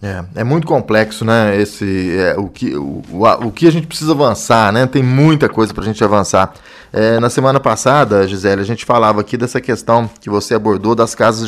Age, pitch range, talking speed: 20-39, 110-155 Hz, 220 wpm